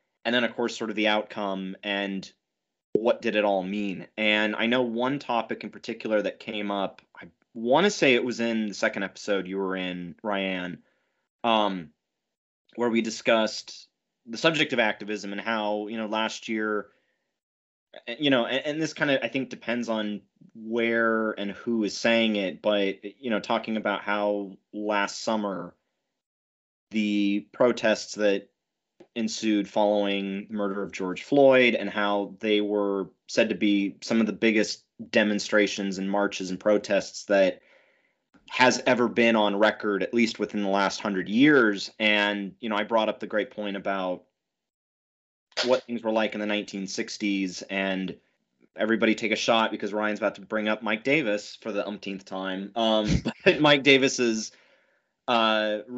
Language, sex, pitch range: English, male, 100-115 Hz